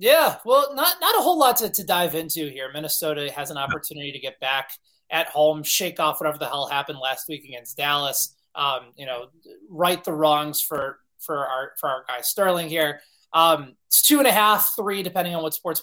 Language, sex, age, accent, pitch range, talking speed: English, male, 20-39, American, 145-180 Hz, 210 wpm